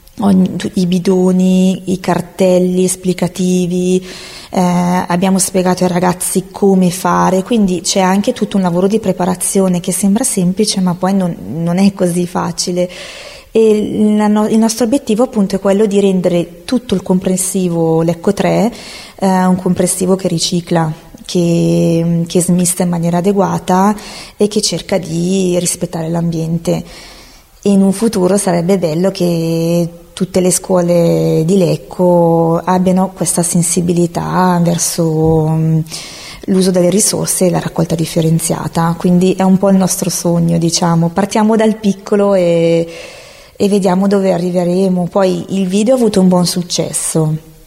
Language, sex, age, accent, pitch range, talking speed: Italian, female, 20-39, native, 175-195 Hz, 135 wpm